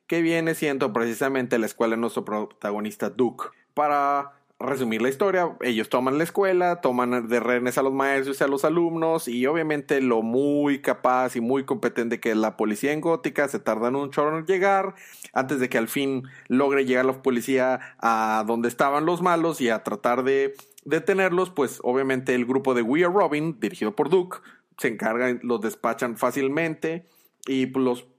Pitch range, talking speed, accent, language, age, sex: 120-150 Hz, 180 wpm, Mexican, Spanish, 30-49, male